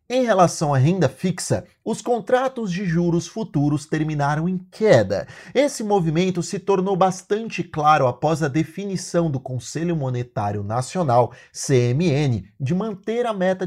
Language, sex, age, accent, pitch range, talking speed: Portuguese, male, 30-49, Brazilian, 150-205 Hz, 135 wpm